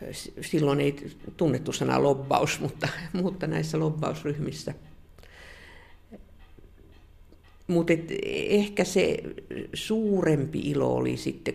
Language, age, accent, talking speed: Finnish, 50-69, native, 85 wpm